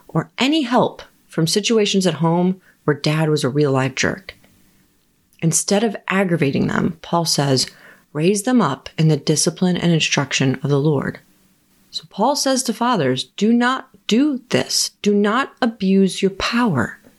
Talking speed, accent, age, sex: 155 wpm, American, 30-49, female